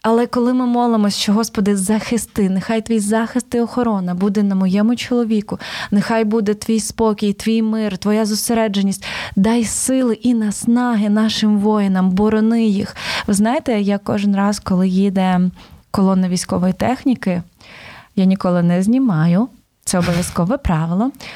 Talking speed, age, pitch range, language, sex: 140 wpm, 20-39, 200-235 Hz, Ukrainian, female